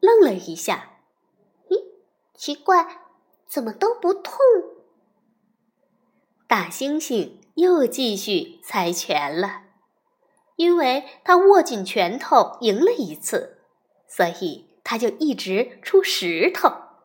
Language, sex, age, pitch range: Chinese, female, 20-39, 230-365 Hz